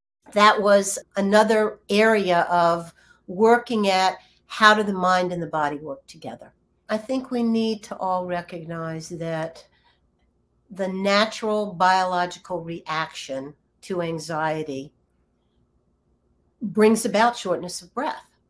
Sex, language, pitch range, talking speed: female, English, 175-220 Hz, 115 wpm